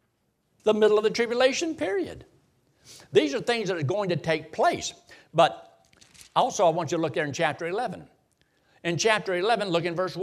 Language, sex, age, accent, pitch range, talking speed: English, male, 60-79, American, 185-245 Hz, 190 wpm